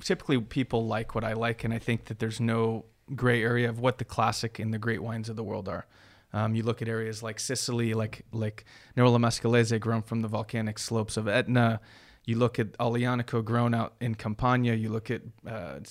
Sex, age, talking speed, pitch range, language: male, 30-49, 210 wpm, 110-120 Hz, English